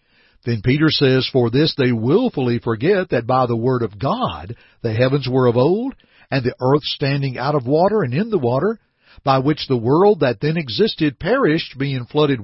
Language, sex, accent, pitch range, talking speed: English, male, American, 130-205 Hz, 195 wpm